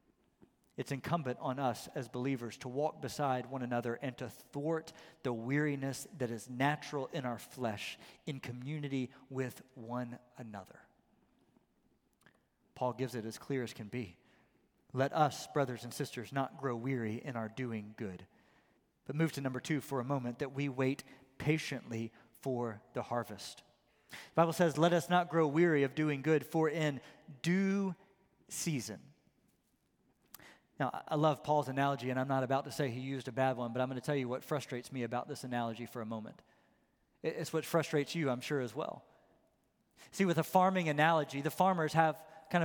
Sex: male